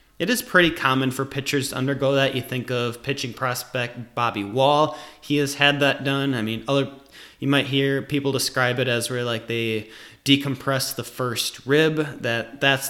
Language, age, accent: English, 20-39, American